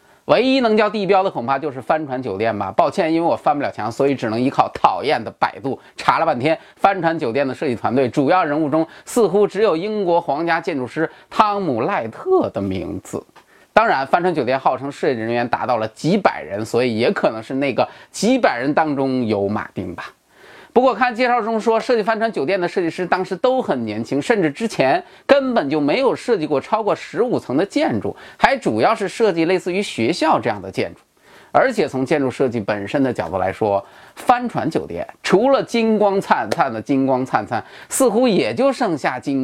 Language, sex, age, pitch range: Chinese, male, 30-49, 130-210 Hz